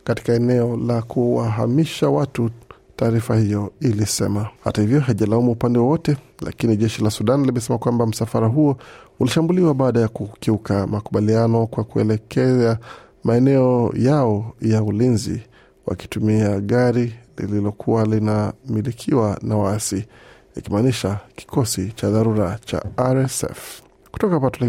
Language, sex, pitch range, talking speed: Swahili, male, 110-130 Hz, 110 wpm